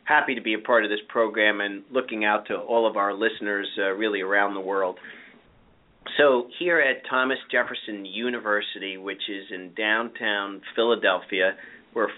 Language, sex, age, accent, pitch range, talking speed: English, male, 40-59, American, 100-125 Hz, 165 wpm